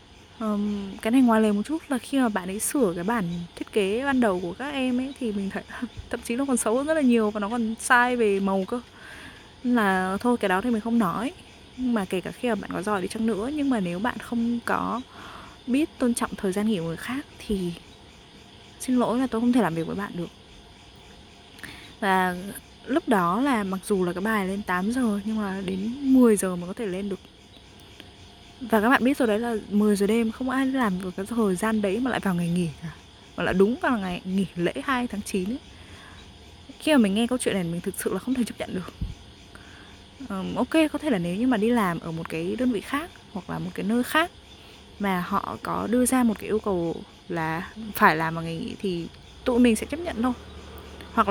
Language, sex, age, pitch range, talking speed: Vietnamese, female, 20-39, 190-245 Hz, 245 wpm